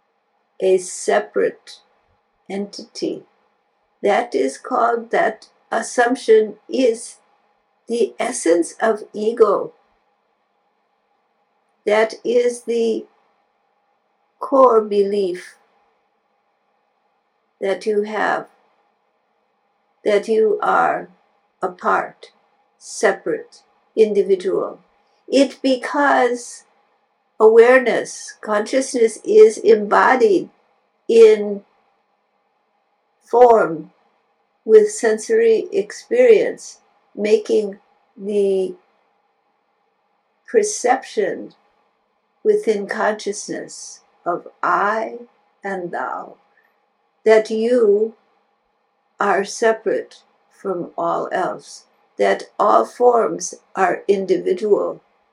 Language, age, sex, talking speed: English, 60-79, female, 65 wpm